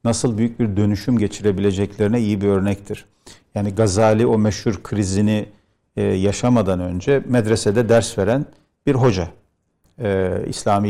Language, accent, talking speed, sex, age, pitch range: Turkish, native, 115 wpm, male, 50-69, 100-120 Hz